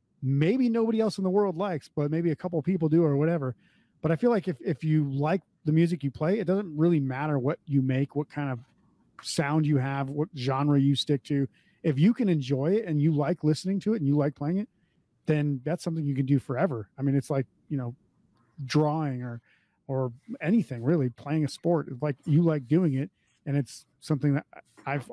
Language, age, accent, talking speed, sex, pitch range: English, 30-49, American, 220 wpm, male, 140-170 Hz